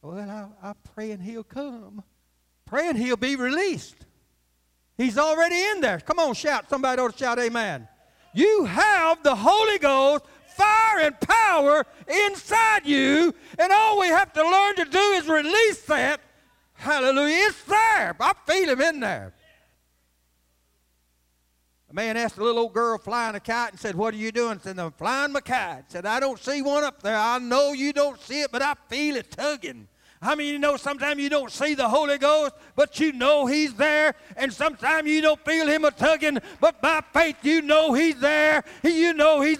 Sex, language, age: male, English, 60-79